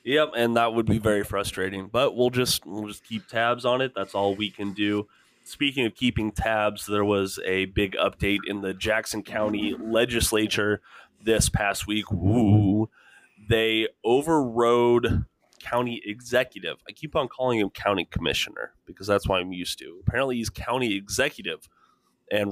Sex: male